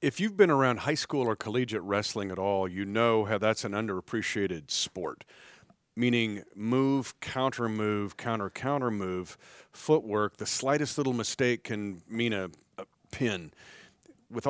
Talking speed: 140 wpm